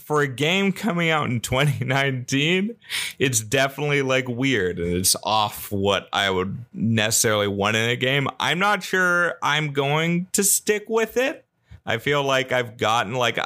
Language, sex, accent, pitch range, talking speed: English, male, American, 95-135 Hz, 160 wpm